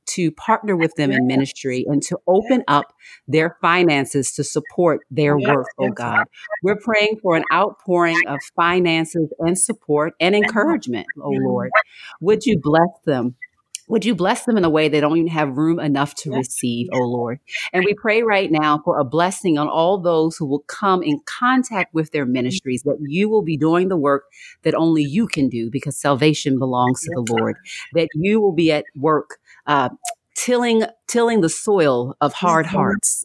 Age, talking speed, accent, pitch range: 40-59, 185 wpm, American, 145-180 Hz